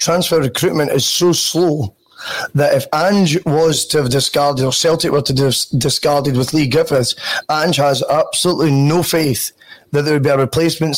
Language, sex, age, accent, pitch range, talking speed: English, male, 20-39, British, 140-155 Hz, 180 wpm